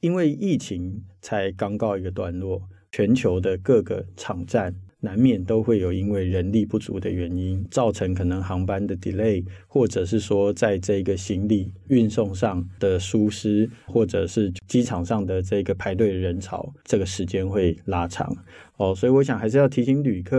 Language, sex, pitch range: Chinese, male, 95-110 Hz